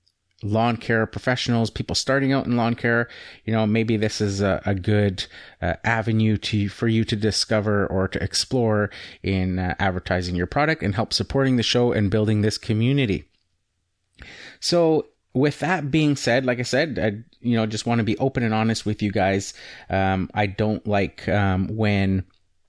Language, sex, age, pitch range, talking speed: English, male, 30-49, 100-115 Hz, 180 wpm